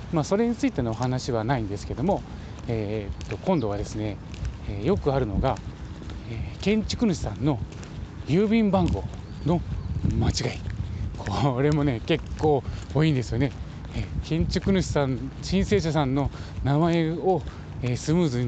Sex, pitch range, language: male, 100-145 Hz, Japanese